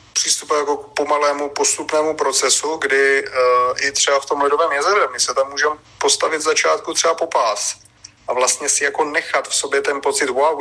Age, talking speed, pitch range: 30-49, 185 wpm, 125-150 Hz